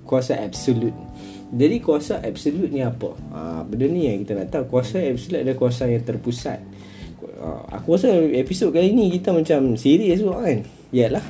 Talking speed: 155 wpm